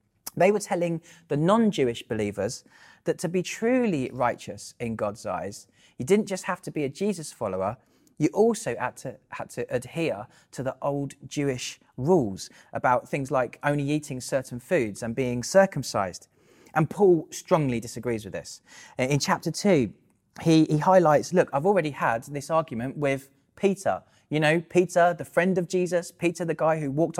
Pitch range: 130-180 Hz